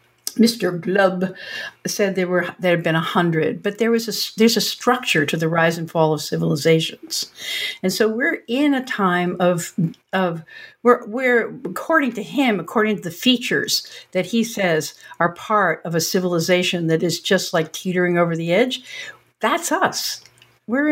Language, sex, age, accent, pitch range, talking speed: English, female, 60-79, American, 175-250 Hz, 170 wpm